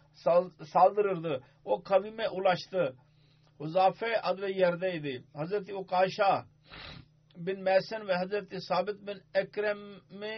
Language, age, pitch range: Turkish, 50-69, 150-195 Hz